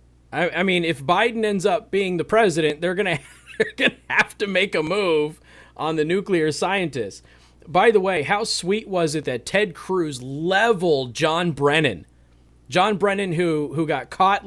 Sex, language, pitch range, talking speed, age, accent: male, English, 110-170 Hz, 165 wpm, 30-49, American